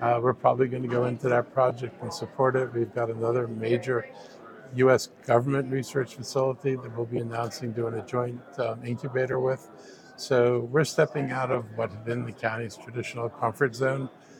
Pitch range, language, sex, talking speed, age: 115-130 Hz, English, male, 180 wpm, 50-69